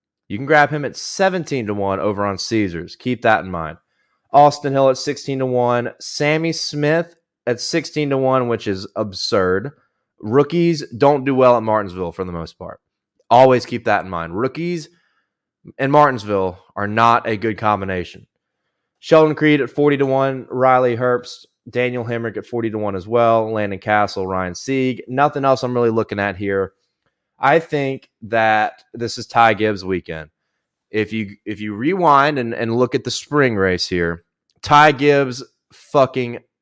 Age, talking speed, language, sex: 20-39, 170 wpm, English, male